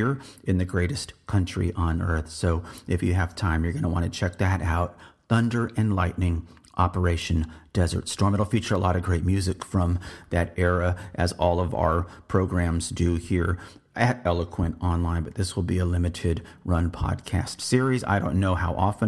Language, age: English, 40-59